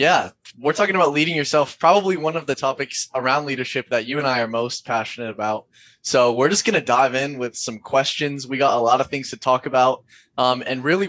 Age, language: 20-39, English